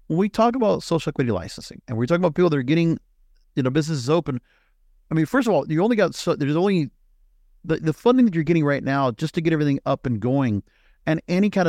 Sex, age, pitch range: male, 50-69, 130-170 Hz